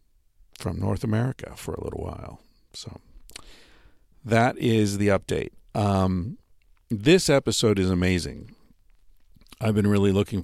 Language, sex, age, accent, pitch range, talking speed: English, male, 50-69, American, 90-110 Hz, 120 wpm